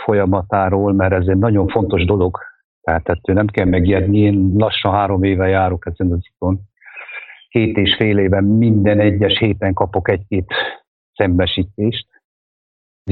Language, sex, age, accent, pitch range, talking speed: English, male, 60-79, Finnish, 90-105 Hz, 135 wpm